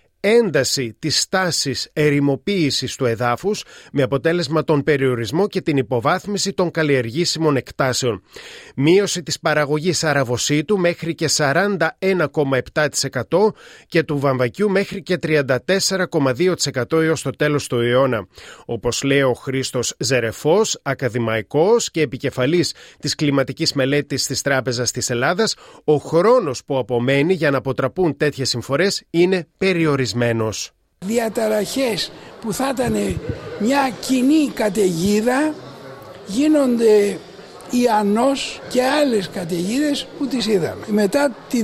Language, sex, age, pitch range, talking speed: Greek, male, 30-49, 140-220 Hz, 110 wpm